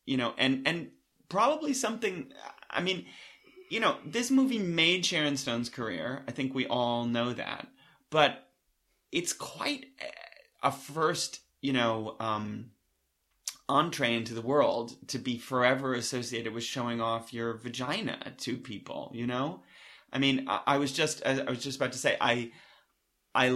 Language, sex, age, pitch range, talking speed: English, male, 30-49, 110-135 Hz, 155 wpm